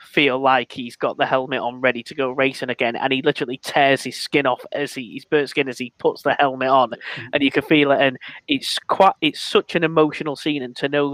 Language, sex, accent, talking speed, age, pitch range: English, male, British, 235 wpm, 20-39, 120-140 Hz